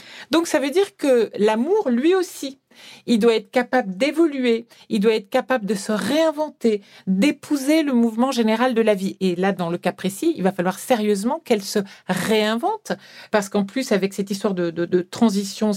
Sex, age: female, 50-69